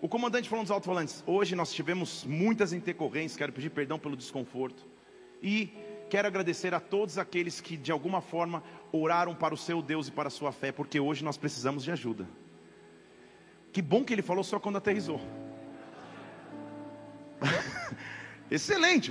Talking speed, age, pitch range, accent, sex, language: 155 wpm, 40-59, 190-280 Hz, Brazilian, male, Portuguese